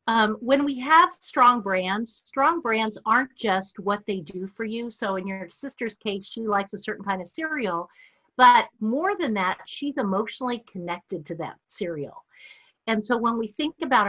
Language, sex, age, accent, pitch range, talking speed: English, female, 50-69, American, 190-250 Hz, 185 wpm